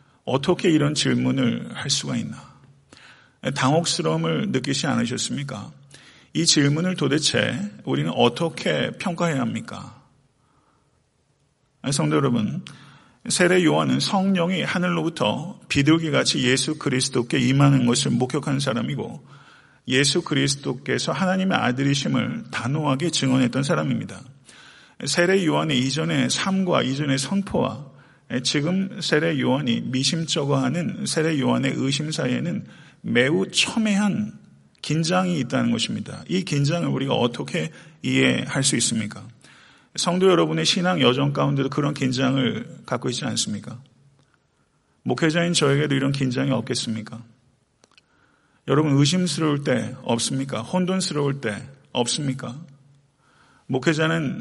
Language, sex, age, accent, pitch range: Korean, male, 40-59, native, 130-160 Hz